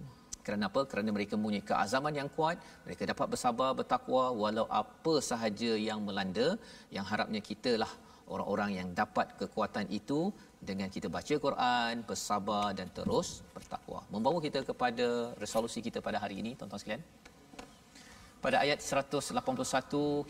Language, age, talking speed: Malayalam, 40-59, 135 wpm